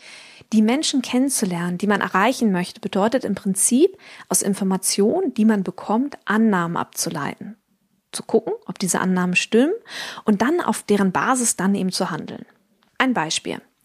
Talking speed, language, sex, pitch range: 145 wpm, German, female, 190-240 Hz